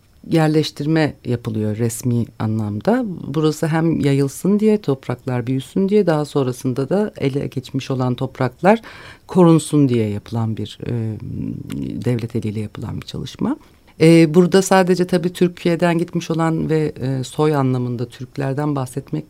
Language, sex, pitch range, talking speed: Turkish, female, 120-155 Hz, 130 wpm